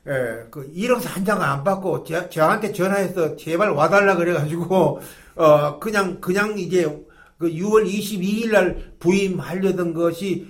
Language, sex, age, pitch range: Korean, male, 50-69, 170-205 Hz